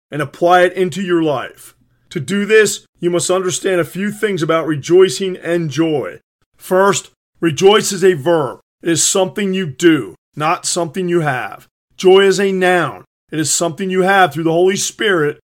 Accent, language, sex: American, English, male